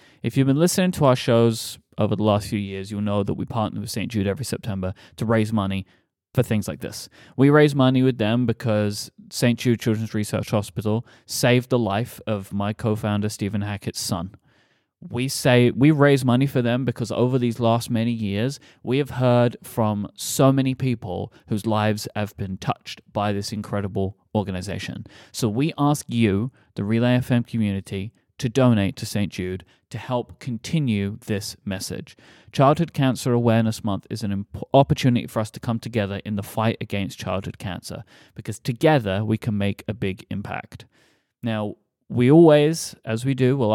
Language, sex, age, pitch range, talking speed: English, male, 30-49, 105-125 Hz, 175 wpm